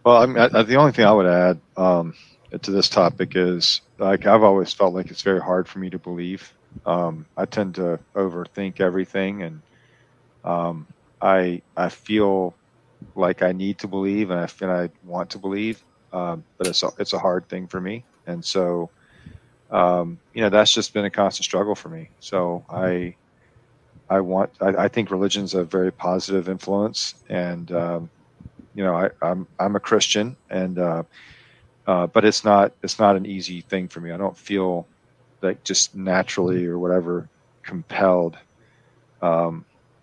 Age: 40-59